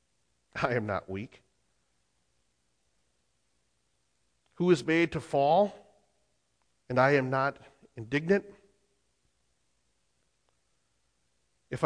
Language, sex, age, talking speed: English, male, 40-59, 75 wpm